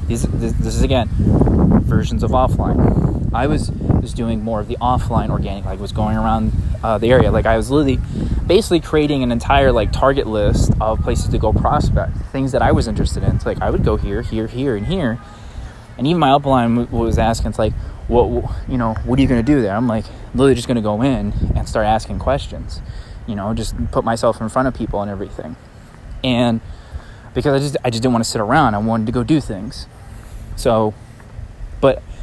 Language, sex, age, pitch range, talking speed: English, male, 20-39, 100-125 Hz, 215 wpm